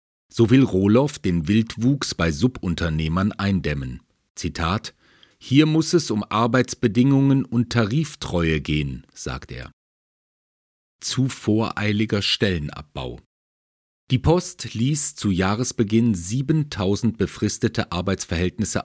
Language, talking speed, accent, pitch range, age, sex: German, 95 wpm, German, 85-115 Hz, 40-59, male